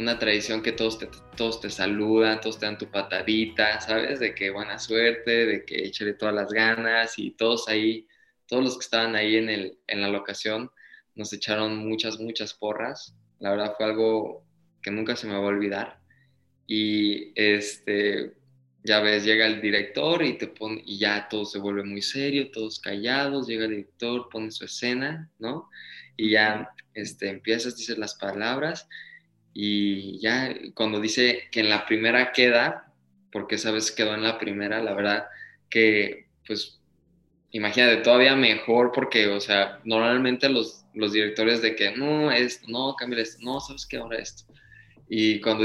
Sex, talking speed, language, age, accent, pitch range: male, 170 wpm, Spanish, 20-39, Mexican, 105-115 Hz